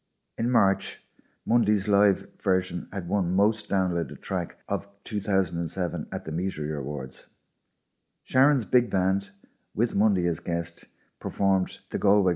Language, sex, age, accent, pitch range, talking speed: English, male, 50-69, Irish, 85-100 Hz, 125 wpm